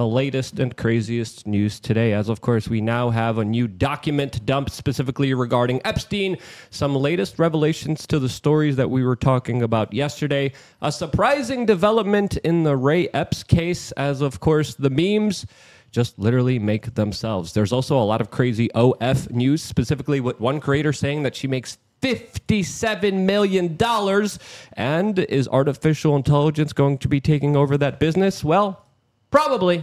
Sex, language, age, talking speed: male, Spanish, 30-49, 160 wpm